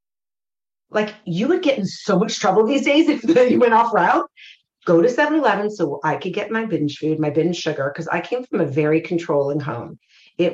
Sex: female